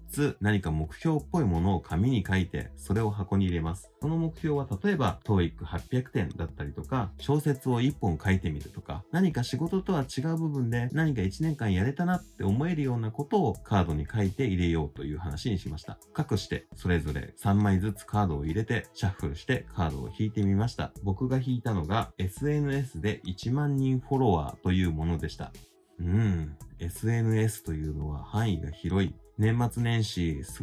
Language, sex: Japanese, male